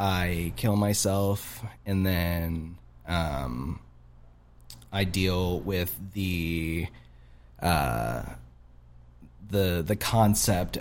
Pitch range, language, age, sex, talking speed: 85-110 Hz, English, 20-39, male, 80 wpm